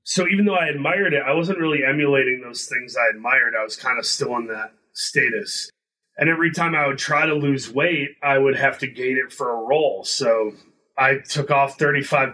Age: 30-49